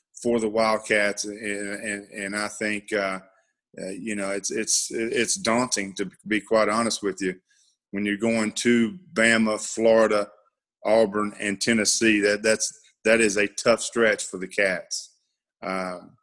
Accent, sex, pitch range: American, male, 105-115 Hz